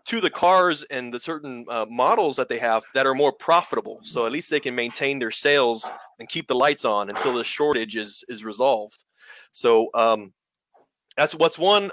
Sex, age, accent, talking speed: male, 30-49, American, 195 wpm